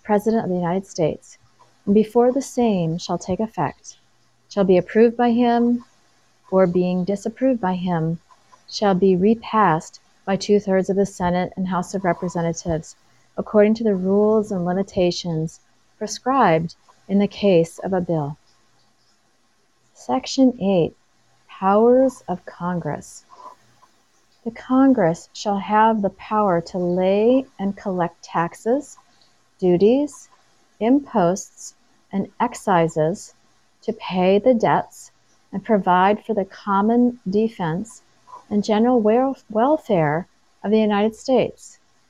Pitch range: 175-235 Hz